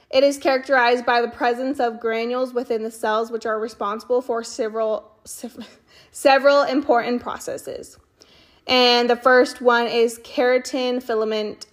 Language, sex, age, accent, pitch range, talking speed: English, female, 20-39, American, 225-265 Hz, 135 wpm